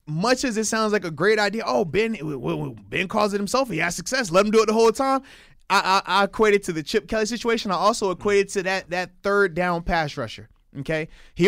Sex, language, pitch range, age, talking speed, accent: male, English, 170-220 Hz, 20-39, 235 wpm, American